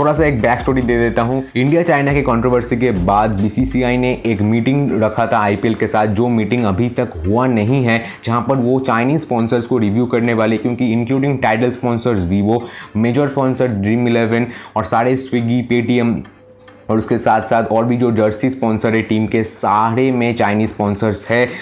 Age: 20-39